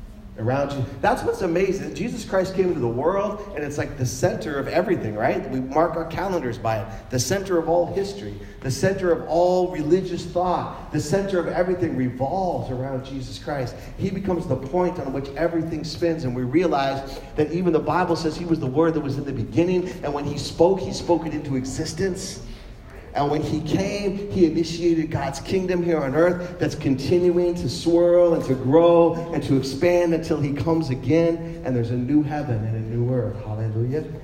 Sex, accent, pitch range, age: male, American, 120-170 Hz, 40-59